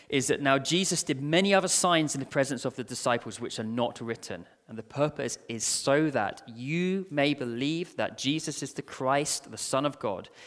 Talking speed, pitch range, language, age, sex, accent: 205 wpm, 115-150 Hz, English, 20-39, male, British